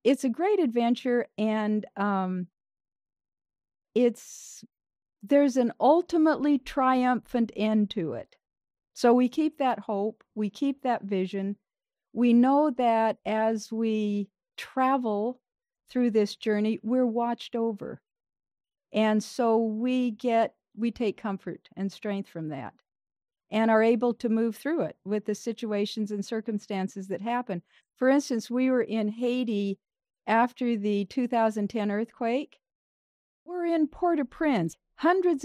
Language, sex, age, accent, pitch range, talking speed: English, female, 50-69, American, 200-255 Hz, 125 wpm